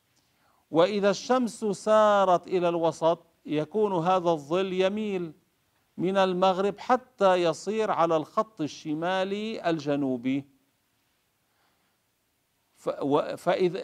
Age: 50-69